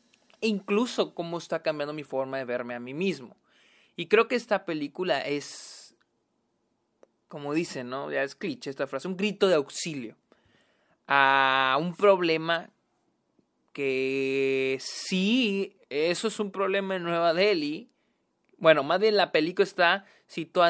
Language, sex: Spanish, male